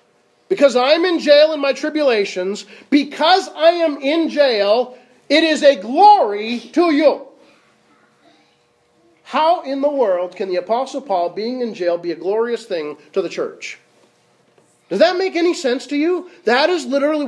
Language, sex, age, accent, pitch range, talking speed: English, male, 40-59, American, 225-315 Hz, 160 wpm